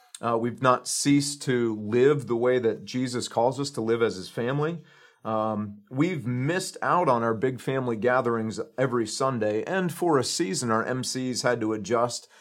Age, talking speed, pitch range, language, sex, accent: 40-59, 180 wpm, 110-135 Hz, English, male, American